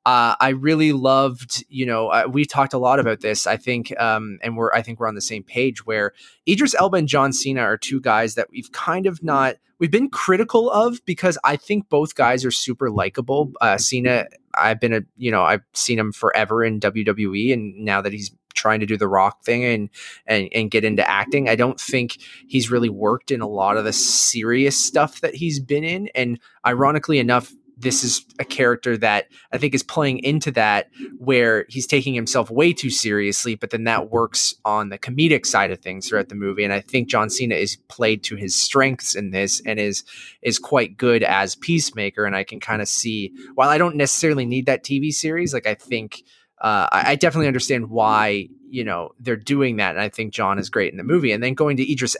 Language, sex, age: English, male, 20-39